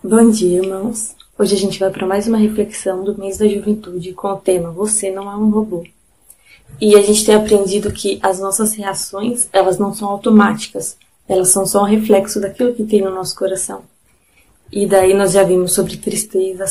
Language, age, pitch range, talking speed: Portuguese, 20-39, 195-230 Hz, 195 wpm